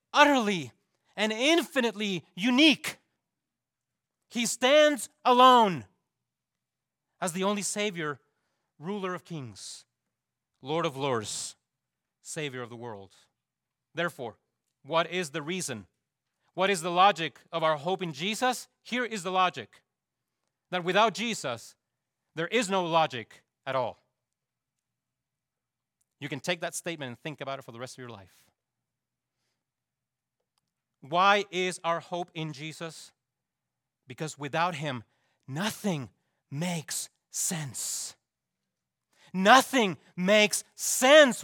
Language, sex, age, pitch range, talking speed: English, male, 30-49, 135-220 Hz, 115 wpm